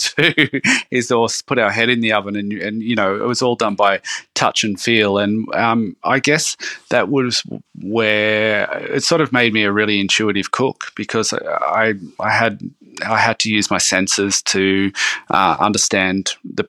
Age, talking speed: 30-49, 180 wpm